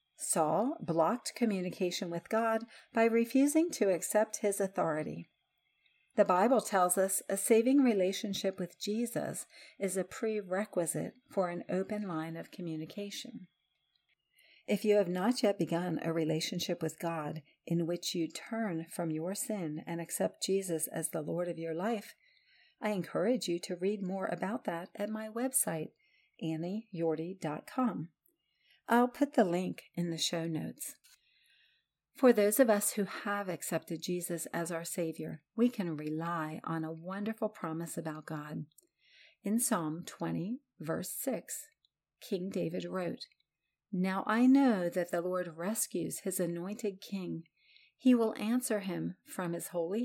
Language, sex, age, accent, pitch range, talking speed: English, female, 50-69, American, 170-225 Hz, 145 wpm